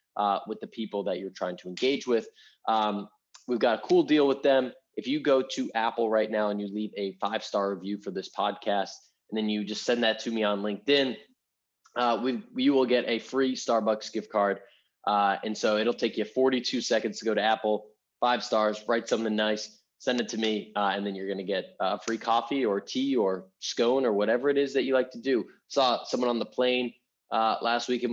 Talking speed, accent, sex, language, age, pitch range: 225 wpm, American, male, English, 20-39, 110-135 Hz